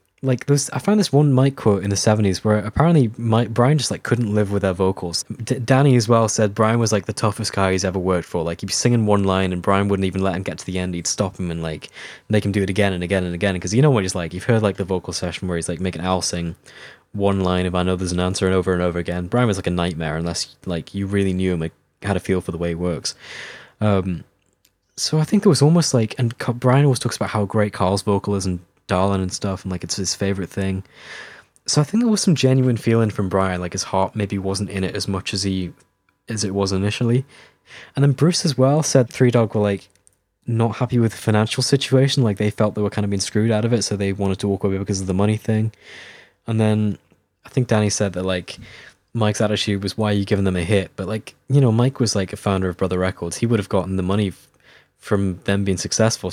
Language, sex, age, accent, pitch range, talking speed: English, male, 10-29, British, 95-115 Hz, 265 wpm